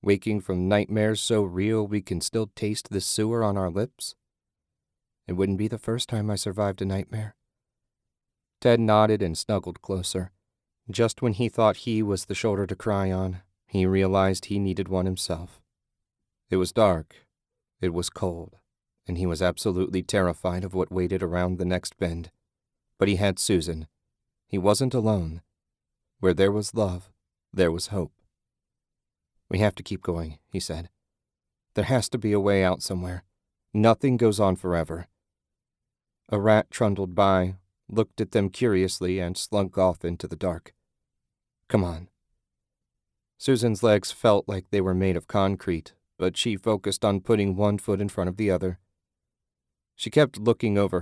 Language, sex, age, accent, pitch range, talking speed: English, male, 30-49, American, 90-105 Hz, 160 wpm